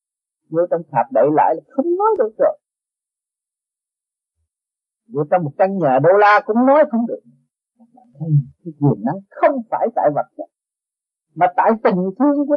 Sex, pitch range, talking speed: male, 165-270 Hz, 175 wpm